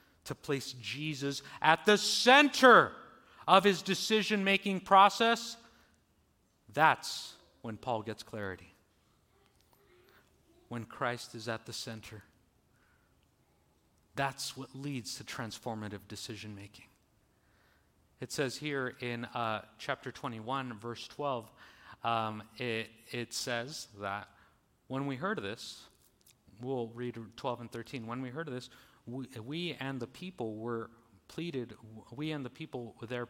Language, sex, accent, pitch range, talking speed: English, male, American, 110-140 Hz, 125 wpm